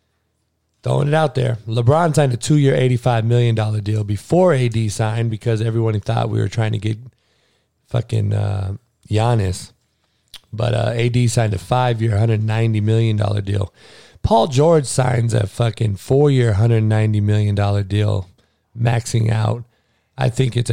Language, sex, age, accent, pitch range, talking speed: English, male, 40-59, American, 105-125 Hz, 140 wpm